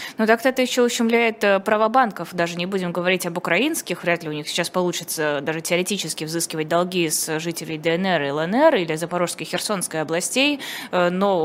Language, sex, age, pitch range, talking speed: Russian, female, 20-39, 170-200 Hz, 175 wpm